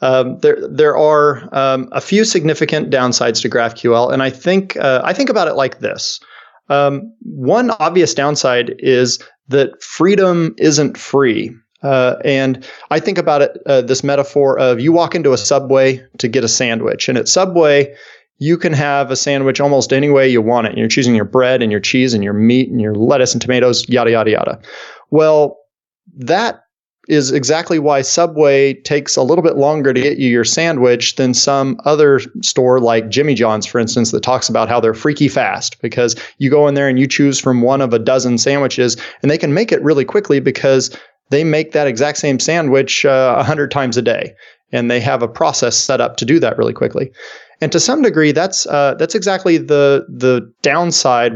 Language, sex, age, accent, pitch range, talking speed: English, male, 30-49, American, 125-150 Hz, 200 wpm